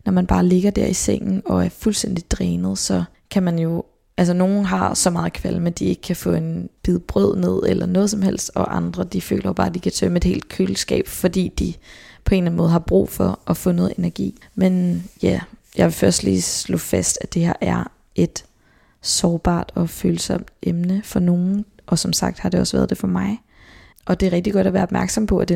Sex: female